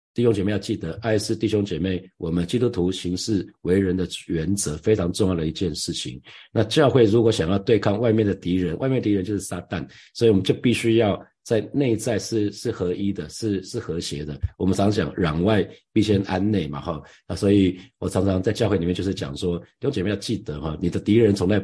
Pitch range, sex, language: 90-110 Hz, male, Chinese